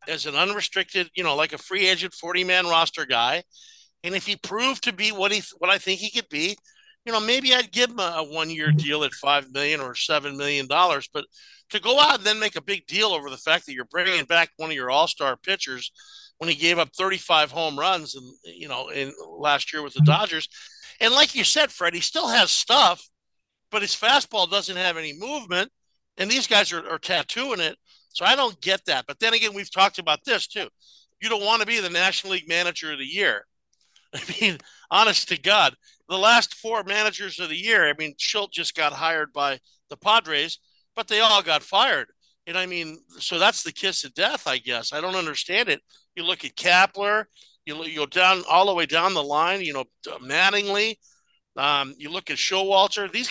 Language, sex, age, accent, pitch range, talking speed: English, male, 50-69, American, 155-215 Hz, 215 wpm